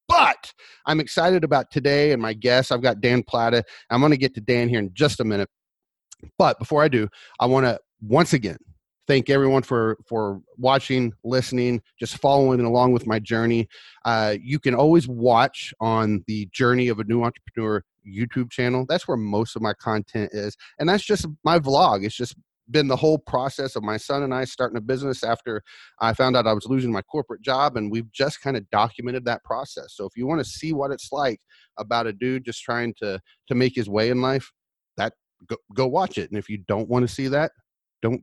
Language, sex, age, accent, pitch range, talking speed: English, male, 30-49, American, 115-145 Hz, 215 wpm